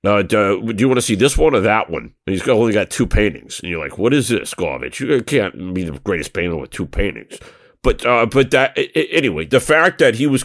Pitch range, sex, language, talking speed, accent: 100-120 Hz, male, English, 265 wpm, American